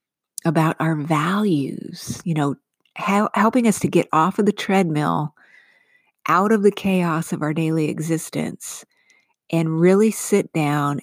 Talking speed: 135 wpm